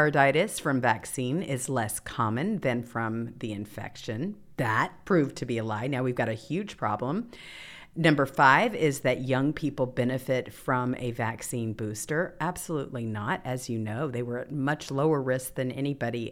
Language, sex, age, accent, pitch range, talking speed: English, female, 40-59, American, 135-195 Hz, 165 wpm